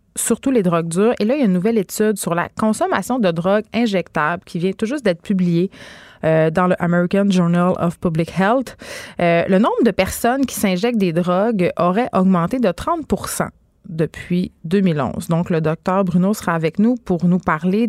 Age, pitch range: 30-49, 175-215 Hz